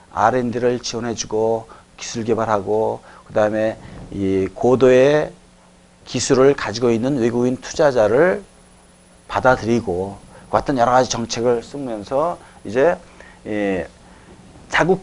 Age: 40-59